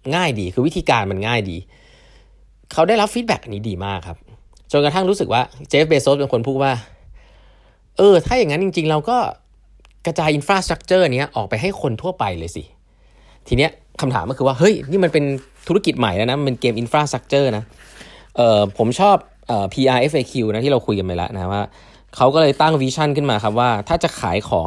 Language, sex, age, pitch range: Thai, male, 20-39, 100-150 Hz